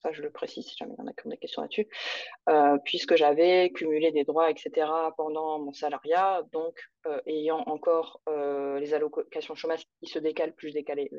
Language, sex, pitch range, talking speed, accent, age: French, female, 155-235 Hz, 200 wpm, French, 20-39